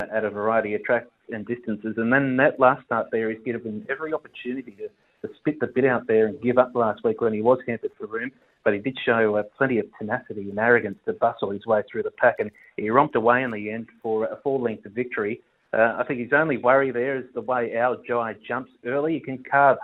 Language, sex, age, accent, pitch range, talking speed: English, male, 30-49, Australian, 110-125 Hz, 245 wpm